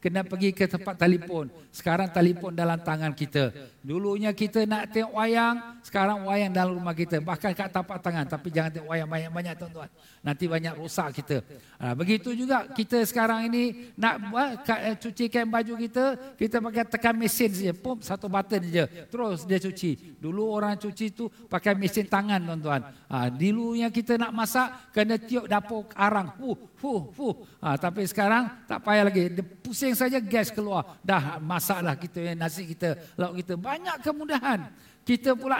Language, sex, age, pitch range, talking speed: Malay, male, 50-69, 175-235 Hz, 165 wpm